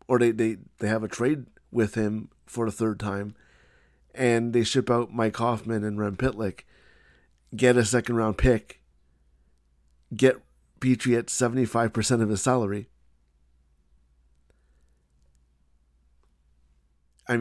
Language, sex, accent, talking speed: English, male, American, 115 wpm